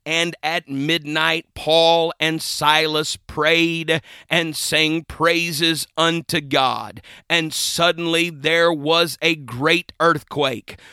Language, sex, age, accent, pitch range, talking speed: English, male, 40-59, American, 155-190 Hz, 105 wpm